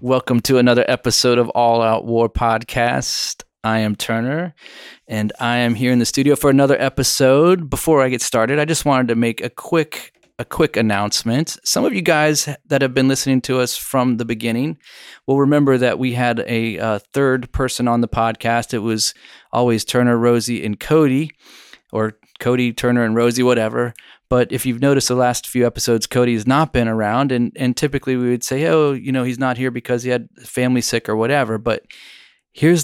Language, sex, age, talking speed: English, male, 30-49, 195 wpm